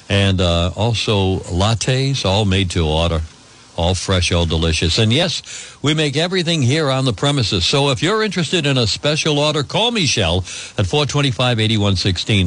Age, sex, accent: 60-79, male, American